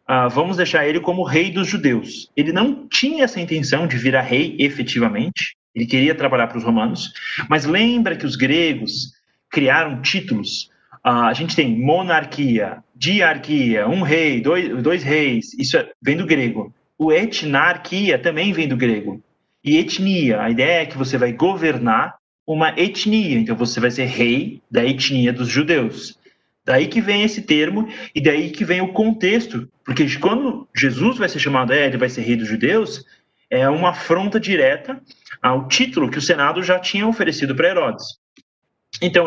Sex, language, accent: male, Portuguese, Brazilian